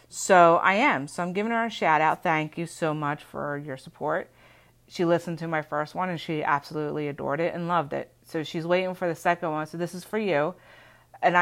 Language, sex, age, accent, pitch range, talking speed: English, female, 30-49, American, 155-190 Hz, 230 wpm